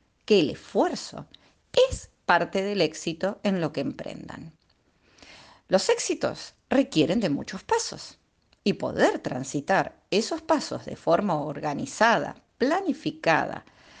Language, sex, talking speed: Spanish, female, 110 wpm